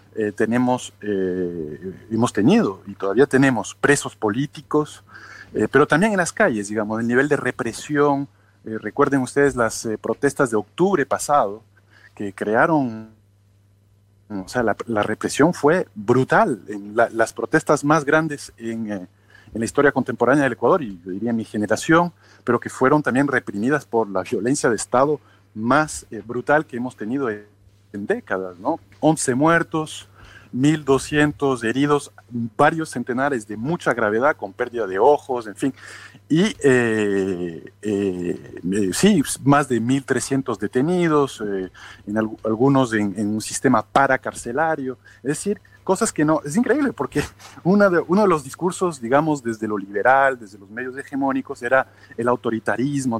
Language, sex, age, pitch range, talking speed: Spanish, male, 40-59, 105-145 Hz, 150 wpm